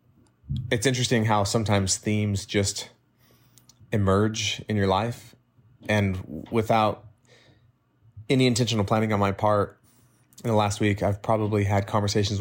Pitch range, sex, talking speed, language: 95-115 Hz, male, 125 wpm, English